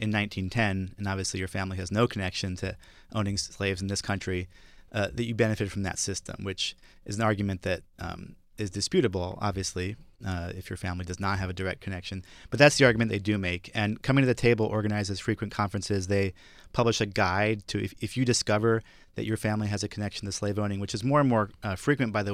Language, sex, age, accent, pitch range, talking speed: English, male, 30-49, American, 95-110 Hz, 225 wpm